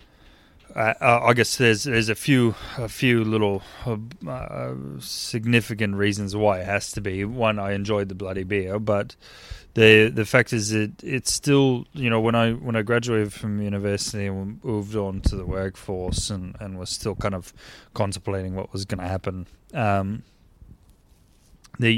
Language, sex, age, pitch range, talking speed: English, male, 20-39, 95-110 Hz, 170 wpm